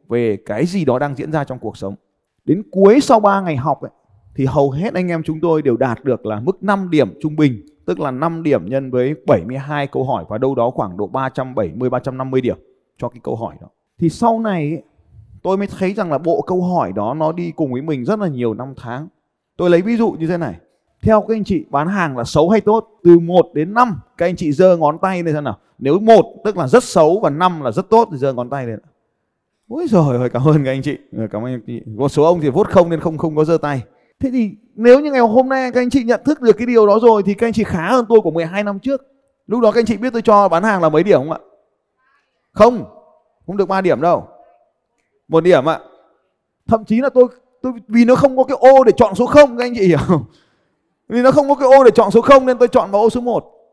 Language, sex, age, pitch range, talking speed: Vietnamese, male, 20-39, 145-225 Hz, 260 wpm